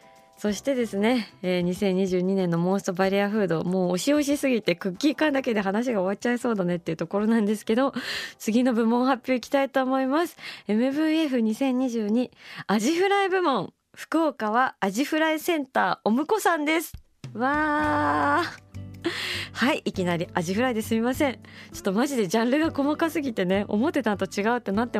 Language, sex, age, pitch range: Japanese, female, 20-39, 170-245 Hz